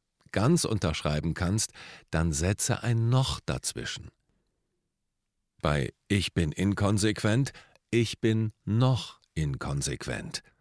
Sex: male